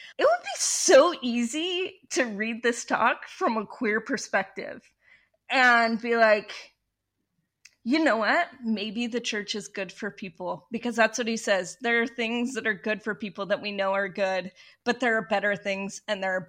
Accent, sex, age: American, female, 20-39